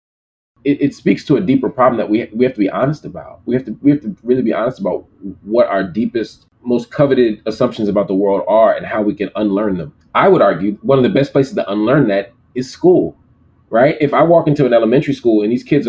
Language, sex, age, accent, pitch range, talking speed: English, male, 30-49, American, 105-135 Hz, 245 wpm